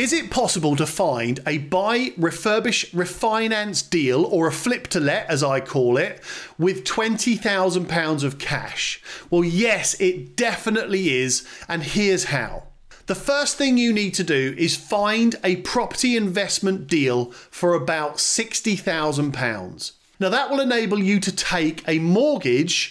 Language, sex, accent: English, male, British